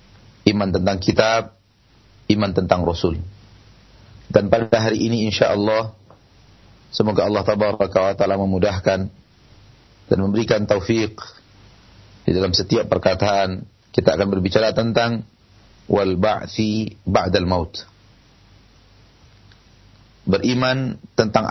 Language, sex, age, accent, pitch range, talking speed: Indonesian, male, 40-59, native, 100-115 Hz, 85 wpm